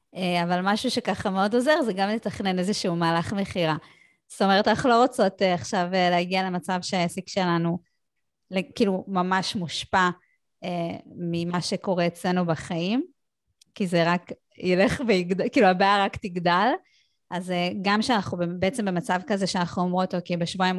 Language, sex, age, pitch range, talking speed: Hebrew, female, 20-39, 175-205 Hz, 135 wpm